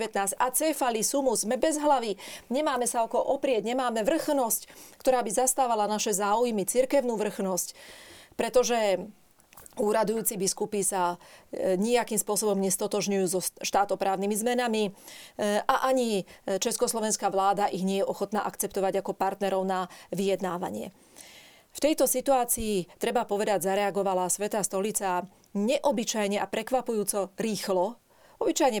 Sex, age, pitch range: female, 40-59, 195-245 Hz